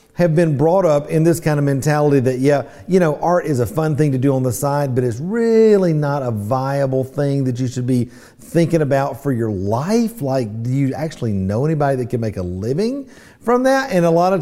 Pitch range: 140-200 Hz